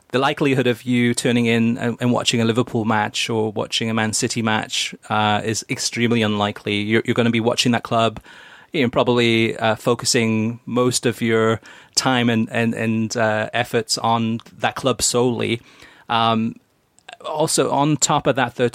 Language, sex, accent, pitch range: English, male, British, 110-125 Hz